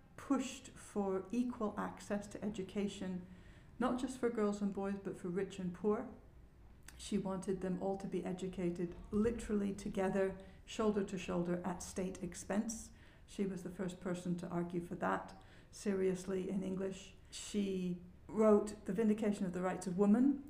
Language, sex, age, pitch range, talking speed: English, female, 60-79, 175-205 Hz, 155 wpm